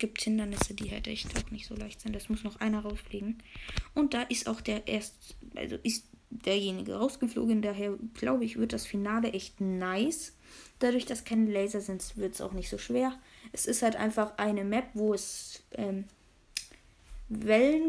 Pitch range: 195-235 Hz